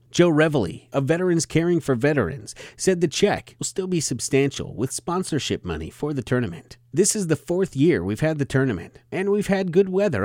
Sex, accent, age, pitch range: male, American, 30-49, 120-175 Hz